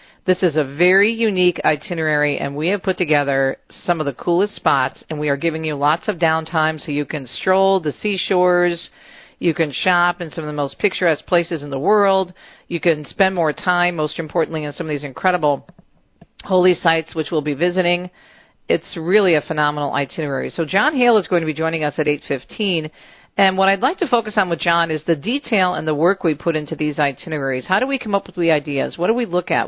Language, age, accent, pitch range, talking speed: English, 50-69, American, 150-190 Hz, 220 wpm